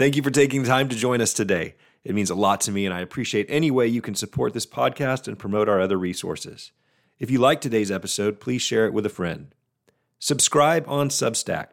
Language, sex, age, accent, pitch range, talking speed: English, male, 40-59, American, 95-130 Hz, 230 wpm